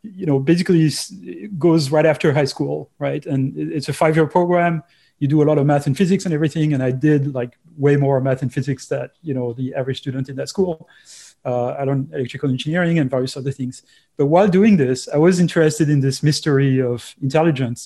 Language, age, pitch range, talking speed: English, 30-49, 135-160 Hz, 215 wpm